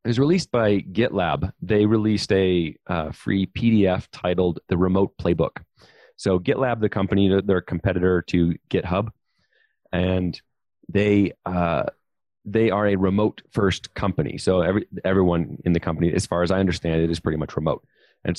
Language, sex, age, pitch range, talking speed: English, male, 30-49, 90-105 Hz, 160 wpm